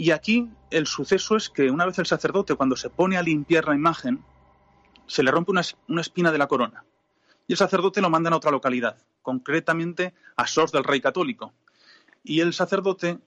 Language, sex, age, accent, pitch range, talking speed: Spanish, male, 30-49, Spanish, 140-180 Hz, 195 wpm